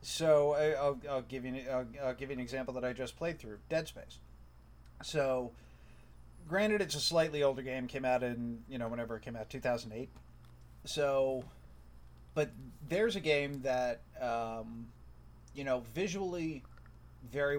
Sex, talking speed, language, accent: male, 145 wpm, English, American